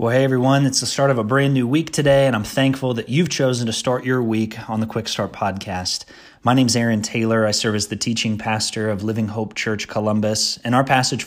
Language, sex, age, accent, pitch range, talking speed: English, male, 30-49, American, 110-130 Hz, 245 wpm